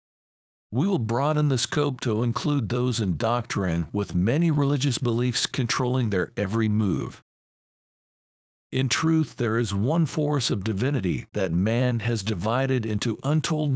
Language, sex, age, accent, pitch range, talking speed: English, male, 60-79, American, 105-140 Hz, 140 wpm